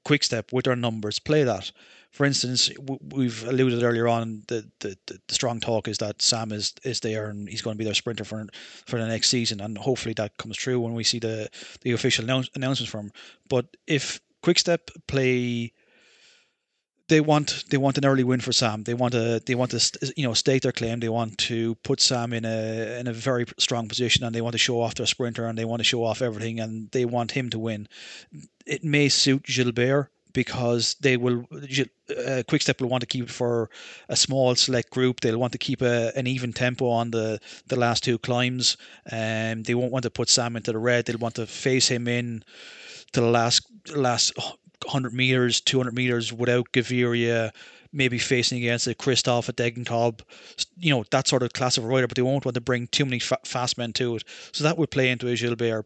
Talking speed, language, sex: 215 wpm, English, male